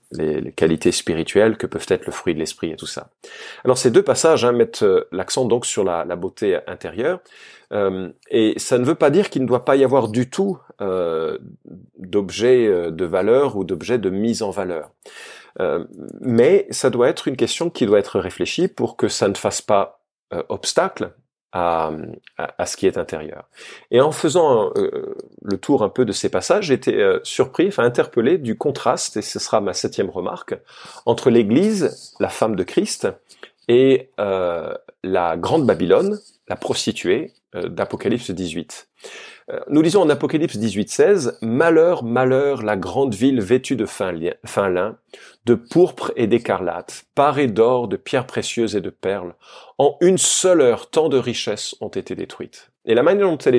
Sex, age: male, 40-59